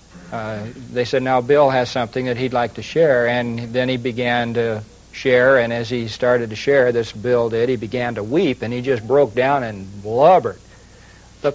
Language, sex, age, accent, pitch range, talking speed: English, male, 60-79, American, 115-165 Hz, 205 wpm